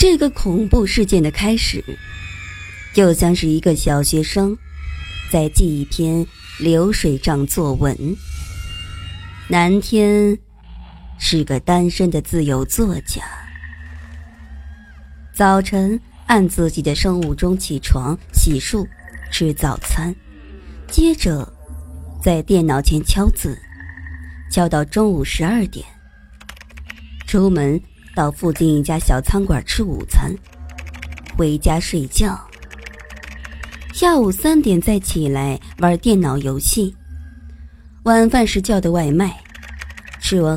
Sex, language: male, Chinese